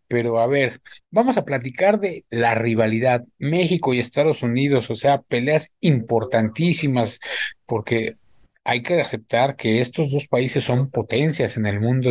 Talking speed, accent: 150 wpm, Mexican